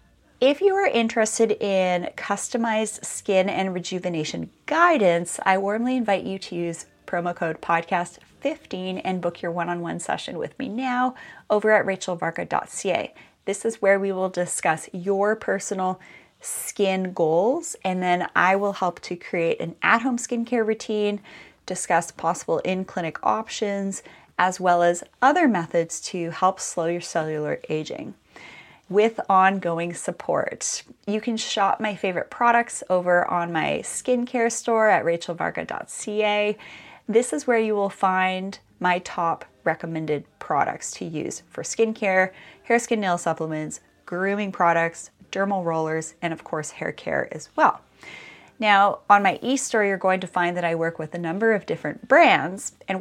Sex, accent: female, American